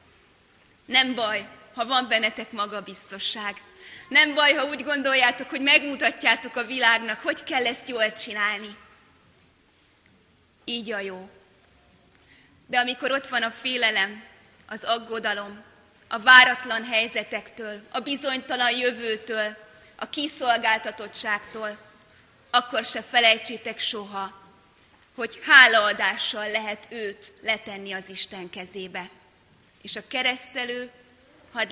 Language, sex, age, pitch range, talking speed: Hungarian, female, 20-39, 205-250 Hz, 105 wpm